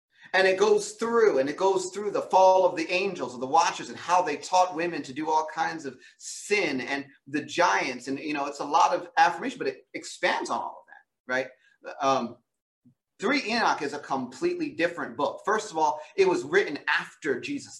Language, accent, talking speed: English, American, 210 wpm